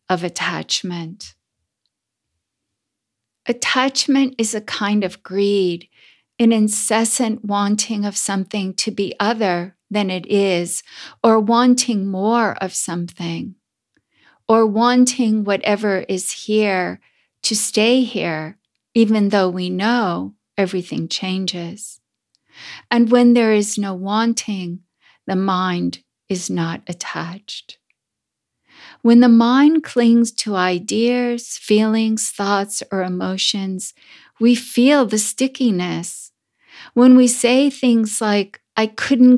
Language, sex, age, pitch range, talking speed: English, female, 50-69, 185-235 Hz, 105 wpm